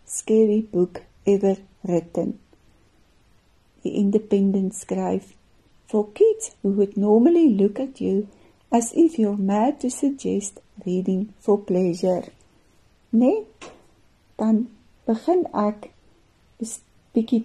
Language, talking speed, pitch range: English, 100 wpm, 195-240 Hz